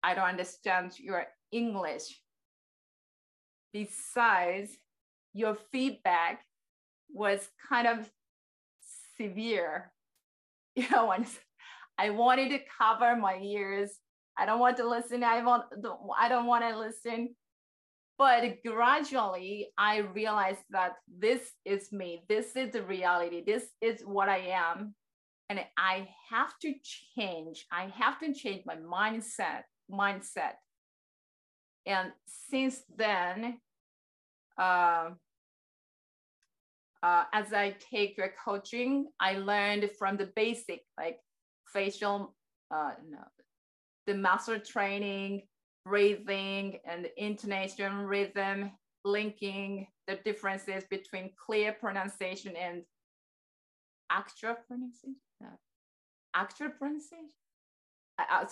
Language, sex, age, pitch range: Japanese, female, 30-49, 190-235 Hz